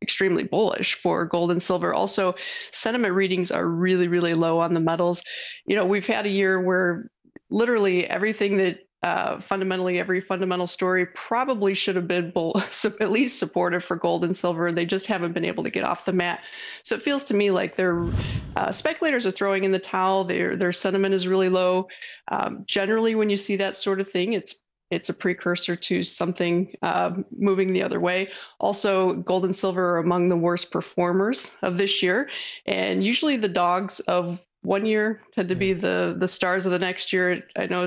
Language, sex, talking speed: English, female, 195 wpm